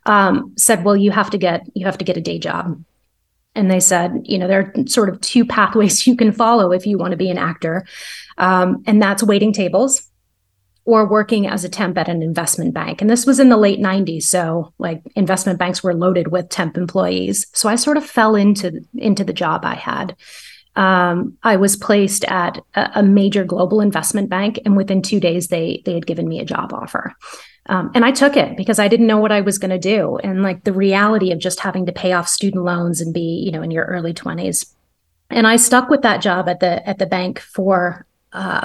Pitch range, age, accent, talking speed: 180-215 Hz, 30-49, American, 230 wpm